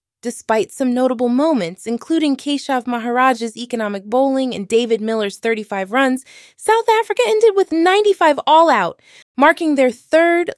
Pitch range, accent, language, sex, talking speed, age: 210-280 Hz, American, English, female, 135 wpm, 20-39